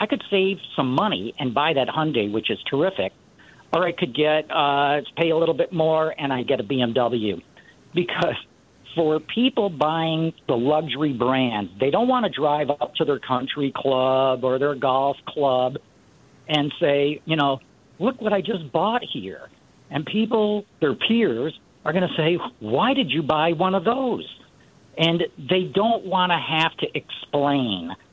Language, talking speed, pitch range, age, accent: English, 175 wpm, 135-180 Hz, 50-69, American